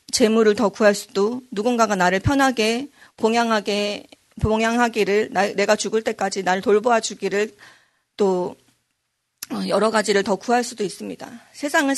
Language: Korean